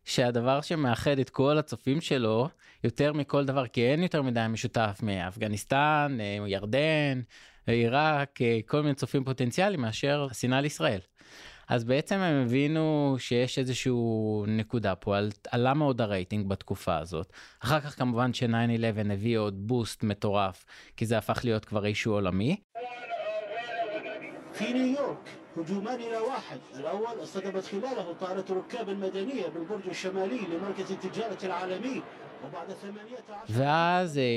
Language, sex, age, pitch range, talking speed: Hebrew, male, 20-39, 110-150 Hz, 95 wpm